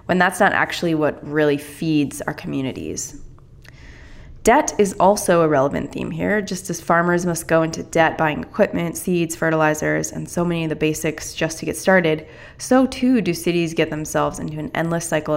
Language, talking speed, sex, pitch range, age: English, 185 wpm, female, 150-175 Hz, 20-39